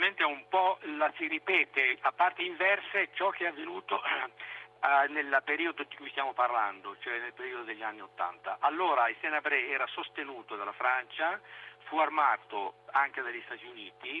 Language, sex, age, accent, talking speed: Italian, male, 50-69, native, 160 wpm